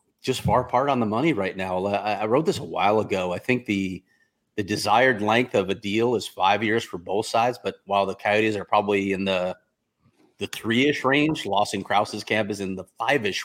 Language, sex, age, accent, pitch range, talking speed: English, male, 30-49, American, 100-125 Hz, 210 wpm